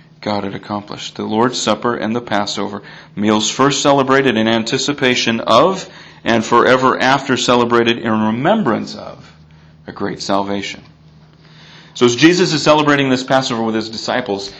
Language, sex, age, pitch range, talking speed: English, male, 40-59, 110-140 Hz, 145 wpm